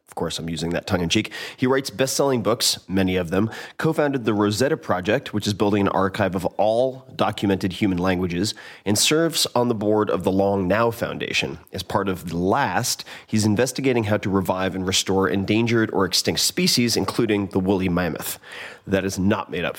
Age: 30-49